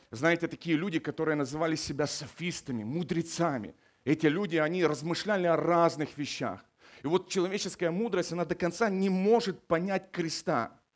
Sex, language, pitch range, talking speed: male, Ukrainian, 165-215 Hz, 140 wpm